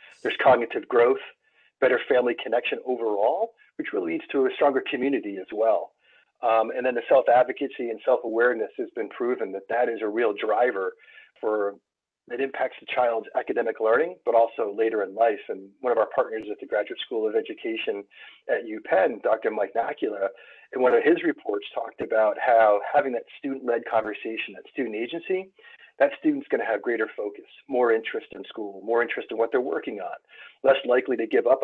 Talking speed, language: 190 wpm, English